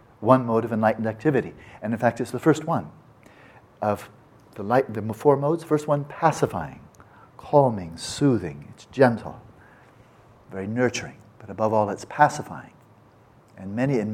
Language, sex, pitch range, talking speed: English, male, 100-125 Hz, 145 wpm